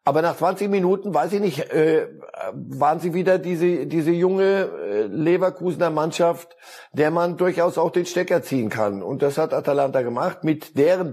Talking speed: 160 wpm